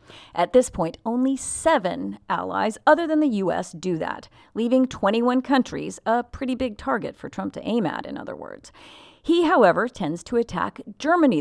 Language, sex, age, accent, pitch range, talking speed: English, female, 40-59, American, 180-260 Hz, 175 wpm